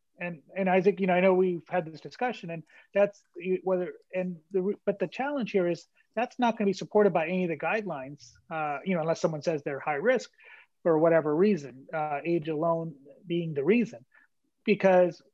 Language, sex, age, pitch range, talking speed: English, male, 30-49, 165-200 Hz, 200 wpm